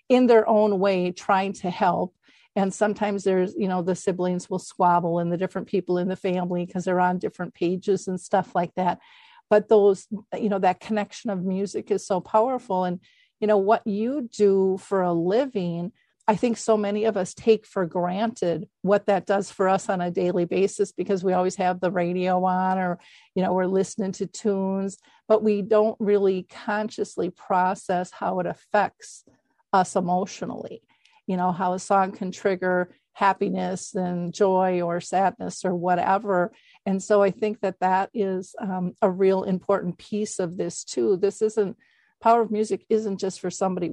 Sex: female